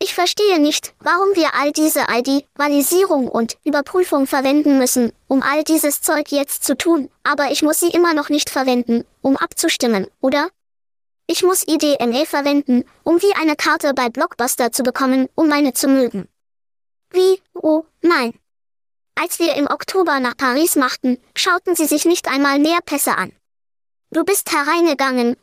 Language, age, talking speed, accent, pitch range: German, 10-29, 160 wpm, German, 255-325 Hz